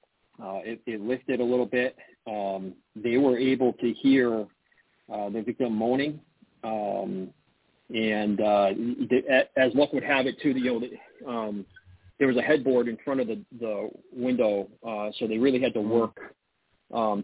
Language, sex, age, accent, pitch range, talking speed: English, male, 40-59, American, 105-130 Hz, 165 wpm